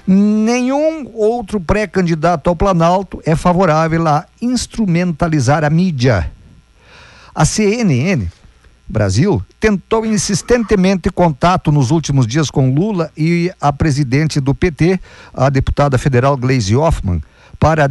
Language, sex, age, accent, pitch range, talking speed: Portuguese, male, 50-69, Brazilian, 135-185 Hz, 110 wpm